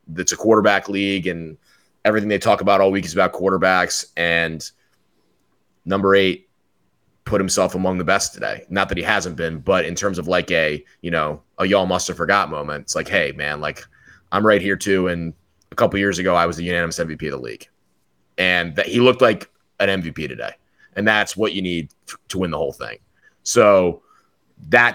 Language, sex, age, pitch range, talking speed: English, male, 30-49, 85-105 Hz, 200 wpm